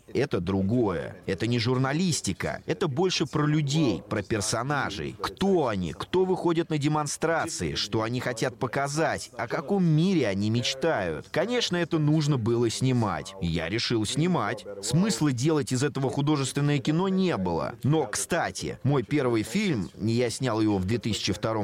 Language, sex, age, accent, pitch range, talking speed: Russian, male, 30-49, native, 105-155 Hz, 145 wpm